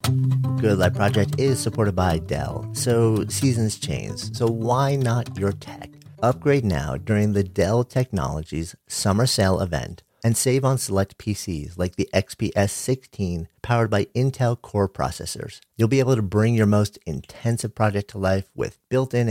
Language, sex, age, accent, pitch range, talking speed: English, male, 50-69, American, 95-125 Hz, 160 wpm